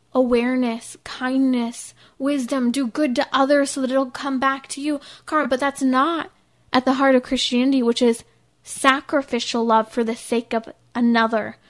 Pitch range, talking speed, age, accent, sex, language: 230-270 Hz, 160 wpm, 20-39, American, female, English